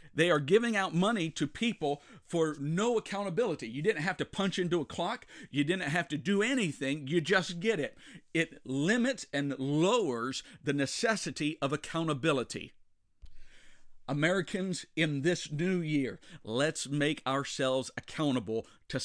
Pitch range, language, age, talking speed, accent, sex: 125-165 Hz, English, 50-69, 145 wpm, American, male